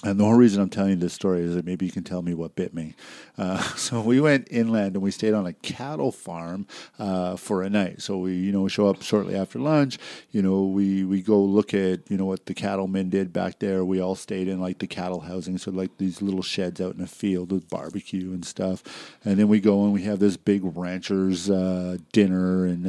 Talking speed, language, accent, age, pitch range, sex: 245 wpm, English, American, 50-69, 90-105 Hz, male